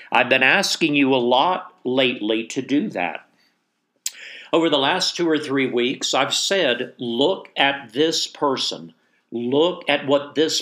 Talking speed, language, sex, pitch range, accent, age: 155 wpm, English, male, 120-165 Hz, American, 50-69